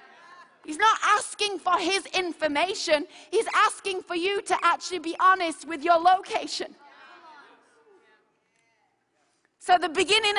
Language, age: English, 30-49